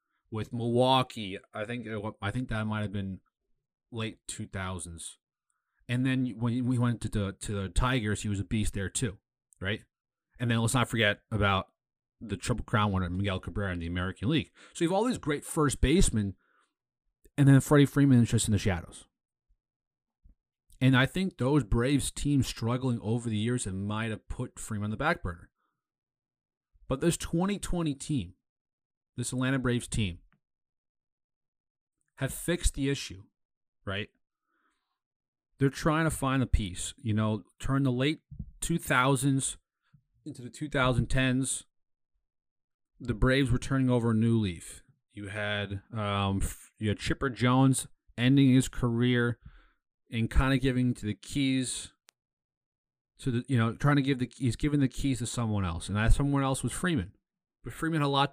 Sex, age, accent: male, 30-49, American